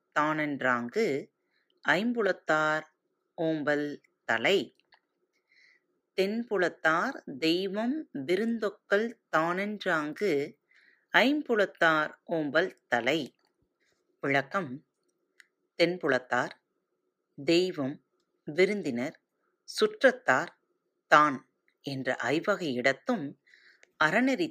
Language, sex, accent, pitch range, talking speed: Tamil, female, native, 150-235 Hz, 45 wpm